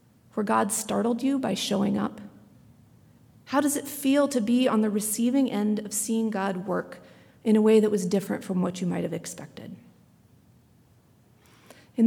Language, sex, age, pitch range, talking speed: English, female, 40-59, 195-245 Hz, 170 wpm